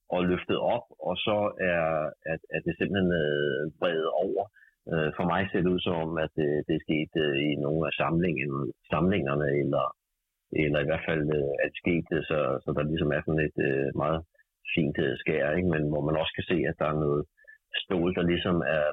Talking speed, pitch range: 195 wpm, 75-100 Hz